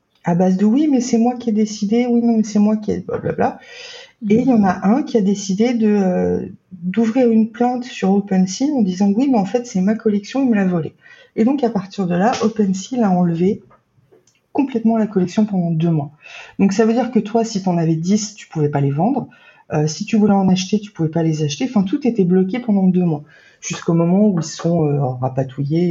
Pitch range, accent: 165-225 Hz, French